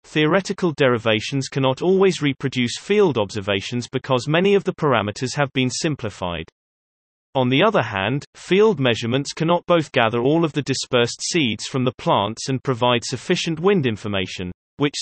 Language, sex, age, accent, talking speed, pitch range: English, male, 30-49, British, 150 wpm, 120-160 Hz